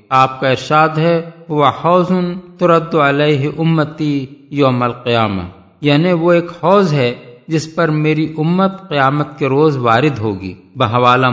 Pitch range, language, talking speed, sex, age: 120-160 Hz, English, 130 wpm, male, 50-69